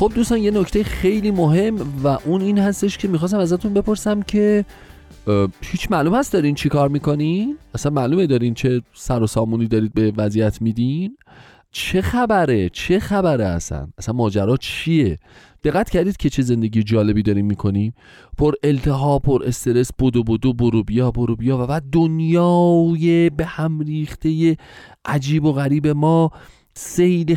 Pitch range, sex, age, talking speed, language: 110-160 Hz, male, 30-49, 155 wpm, Persian